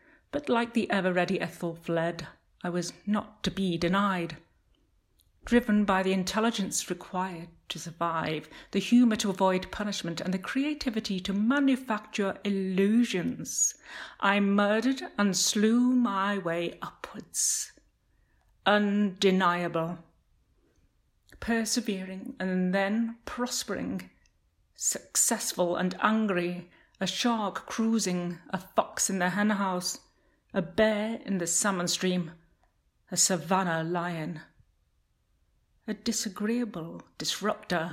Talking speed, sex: 105 wpm, female